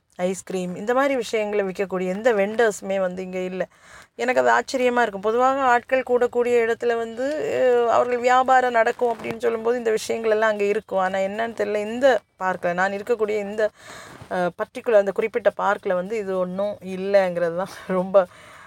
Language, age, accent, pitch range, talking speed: Tamil, 20-39, native, 185-225 Hz, 150 wpm